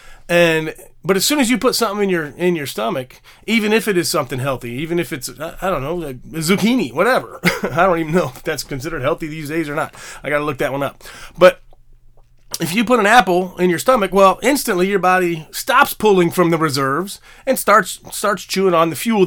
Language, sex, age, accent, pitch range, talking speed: English, male, 30-49, American, 140-190 Hz, 220 wpm